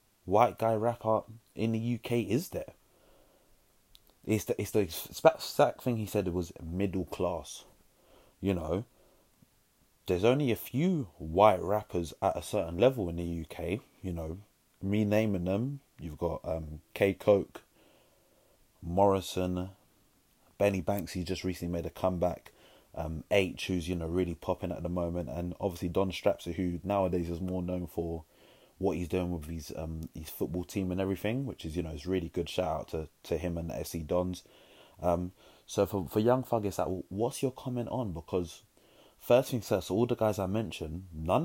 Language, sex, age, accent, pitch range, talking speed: English, male, 30-49, British, 85-105 Hz, 175 wpm